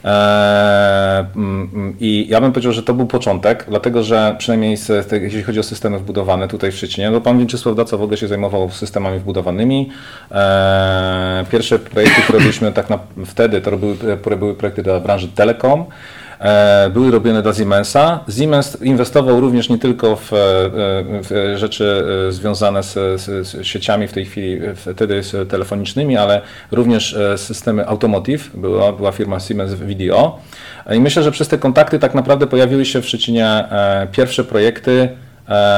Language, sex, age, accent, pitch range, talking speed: Polish, male, 40-59, native, 100-120 Hz, 155 wpm